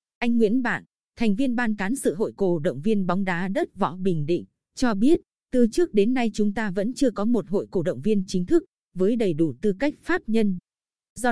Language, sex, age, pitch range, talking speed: Vietnamese, female, 20-39, 185-240 Hz, 235 wpm